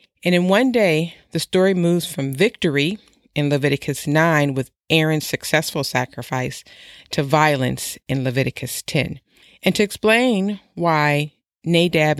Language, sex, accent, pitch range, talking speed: English, female, American, 145-175 Hz, 130 wpm